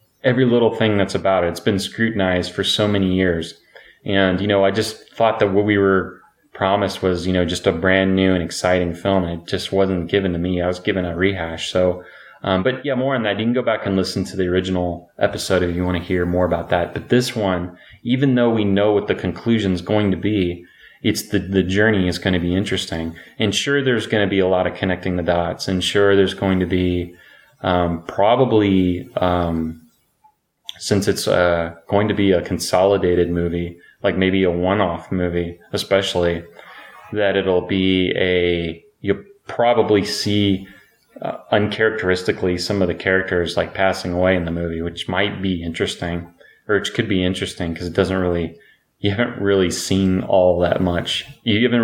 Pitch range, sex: 90-100 Hz, male